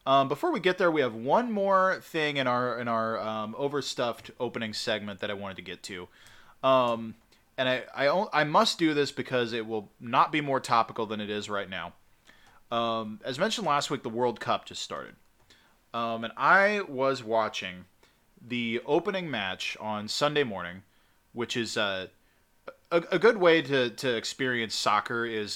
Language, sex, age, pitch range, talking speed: English, male, 20-39, 110-140 Hz, 180 wpm